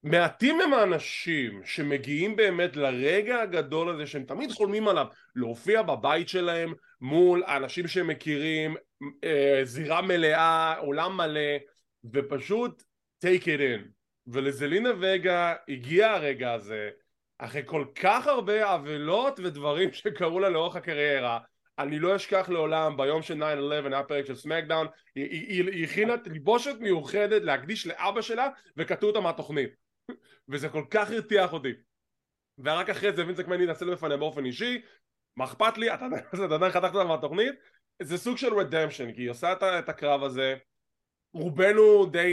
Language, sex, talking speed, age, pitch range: English, male, 125 wpm, 20-39, 145-200 Hz